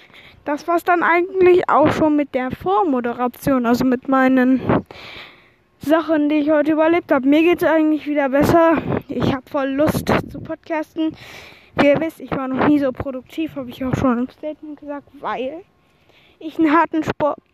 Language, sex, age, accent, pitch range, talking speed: German, female, 20-39, German, 275-330 Hz, 180 wpm